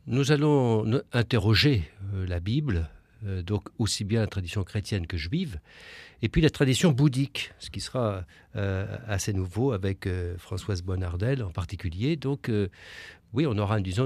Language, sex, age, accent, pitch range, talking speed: French, male, 60-79, French, 95-130 Hz, 135 wpm